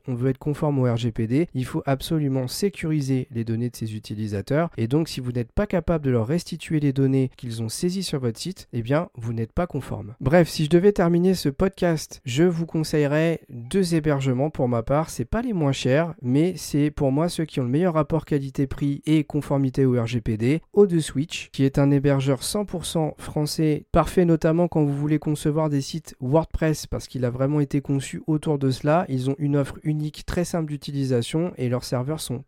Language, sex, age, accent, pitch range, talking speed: French, male, 40-59, French, 130-160 Hz, 205 wpm